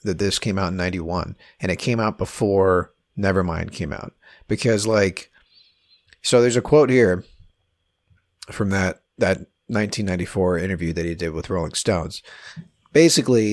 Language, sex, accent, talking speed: English, male, American, 145 wpm